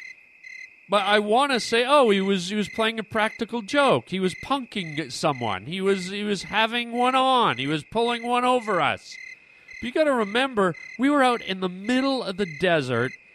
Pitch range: 175-250 Hz